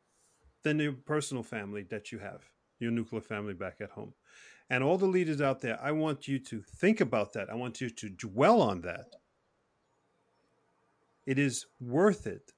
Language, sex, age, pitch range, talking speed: English, male, 40-59, 115-150 Hz, 175 wpm